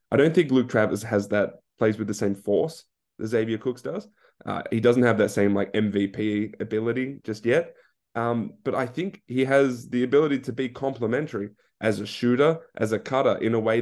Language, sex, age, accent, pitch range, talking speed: English, male, 20-39, Australian, 105-135 Hz, 205 wpm